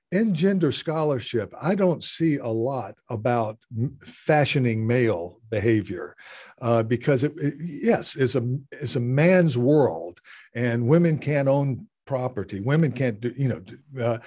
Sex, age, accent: male, 50-69, American